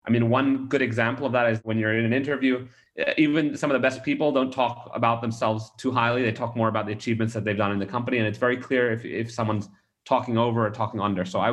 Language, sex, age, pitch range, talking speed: English, male, 30-49, 115-135 Hz, 265 wpm